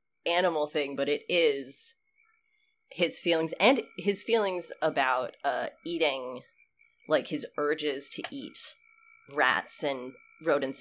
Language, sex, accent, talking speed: English, female, American, 115 wpm